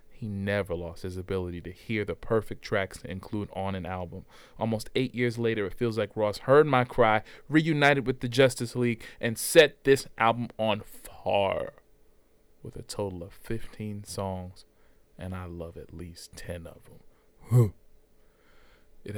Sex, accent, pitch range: male, American, 100-125 Hz